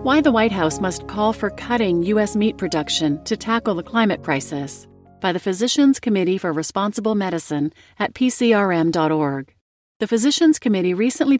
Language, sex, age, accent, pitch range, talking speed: English, female, 40-59, American, 160-220 Hz, 155 wpm